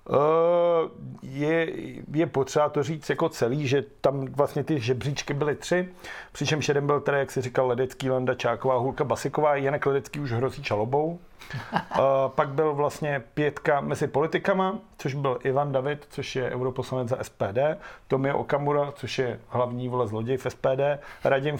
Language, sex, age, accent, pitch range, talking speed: Czech, male, 40-59, native, 130-160 Hz, 160 wpm